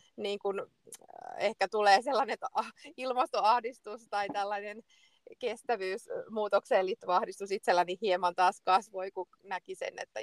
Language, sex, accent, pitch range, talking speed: Finnish, female, native, 175-230 Hz, 110 wpm